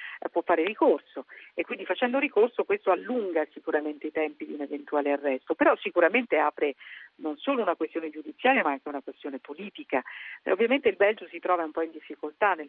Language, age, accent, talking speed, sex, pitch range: Italian, 50-69, native, 190 wpm, female, 150-200 Hz